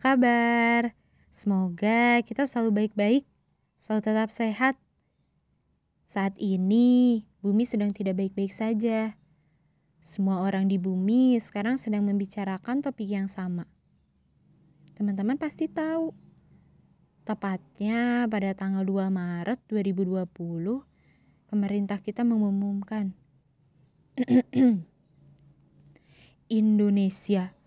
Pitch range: 190-235 Hz